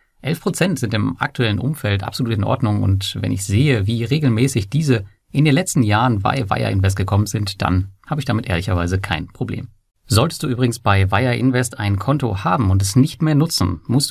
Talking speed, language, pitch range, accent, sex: 195 wpm, German, 100-130 Hz, German, male